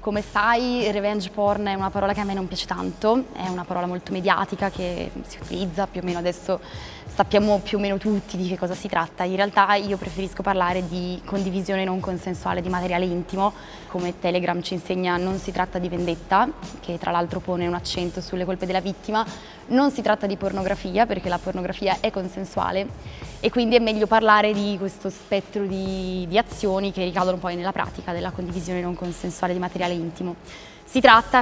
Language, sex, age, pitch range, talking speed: Italian, female, 20-39, 185-205 Hz, 195 wpm